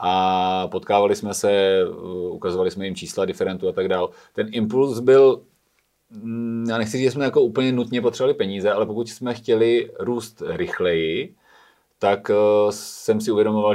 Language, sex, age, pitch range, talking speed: Czech, male, 30-49, 100-120 Hz, 155 wpm